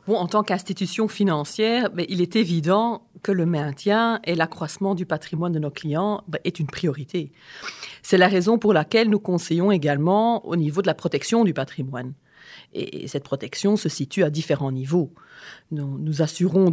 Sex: female